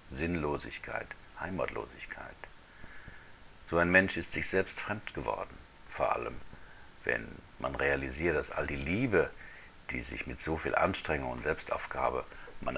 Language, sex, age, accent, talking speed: German, male, 60-79, German, 130 wpm